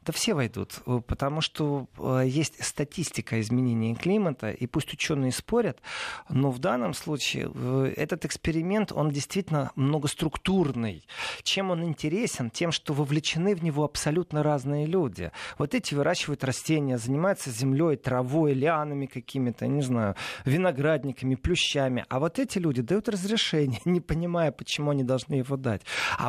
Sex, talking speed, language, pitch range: male, 135 wpm, Russian, 130-165 Hz